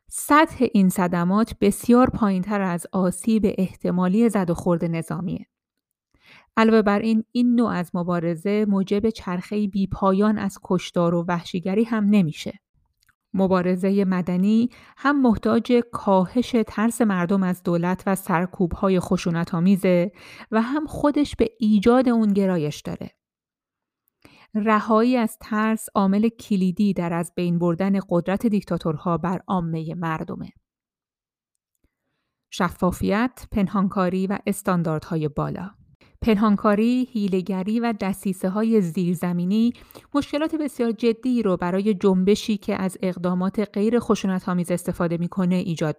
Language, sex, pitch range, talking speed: Persian, female, 180-220 Hz, 115 wpm